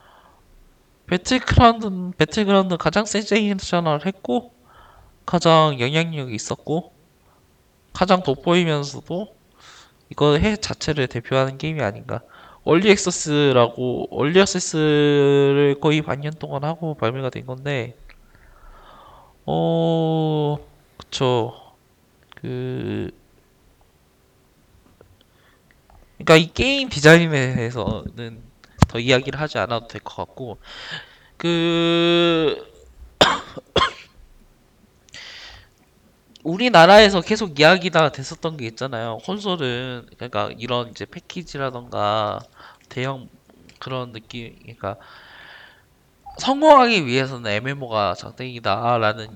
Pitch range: 120-170 Hz